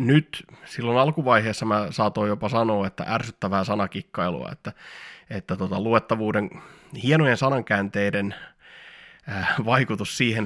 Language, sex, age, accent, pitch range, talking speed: Finnish, male, 20-39, native, 105-135 Hz, 100 wpm